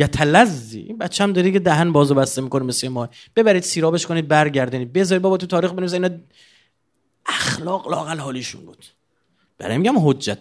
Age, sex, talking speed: 30-49, male, 155 wpm